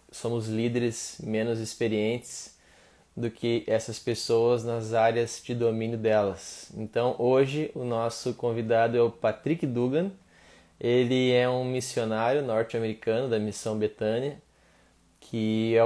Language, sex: Portuguese, male